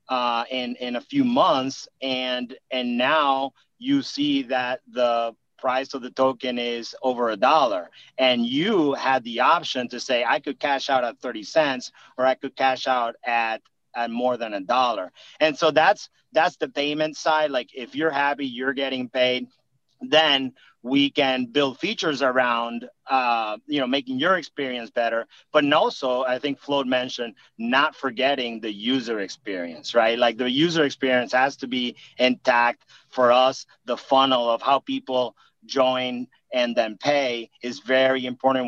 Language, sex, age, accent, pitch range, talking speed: English, male, 40-59, American, 120-135 Hz, 165 wpm